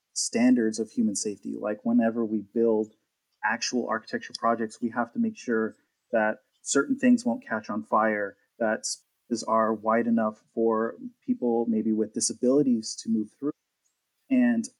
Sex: male